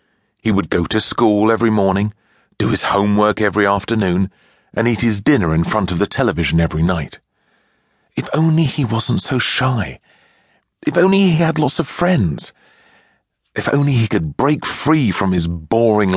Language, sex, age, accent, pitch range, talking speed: English, male, 40-59, British, 90-125 Hz, 165 wpm